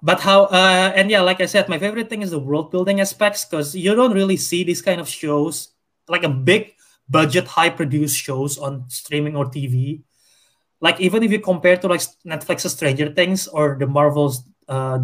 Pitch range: 140-185 Hz